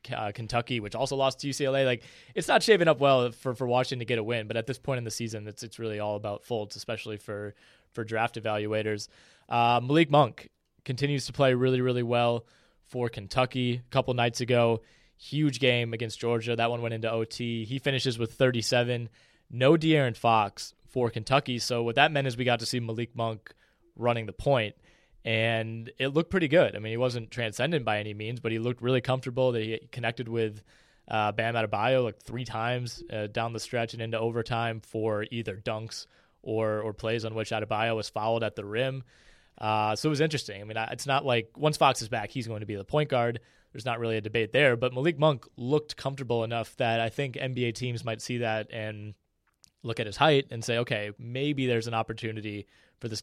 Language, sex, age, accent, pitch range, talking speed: English, male, 20-39, American, 110-130 Hz, 215 wpm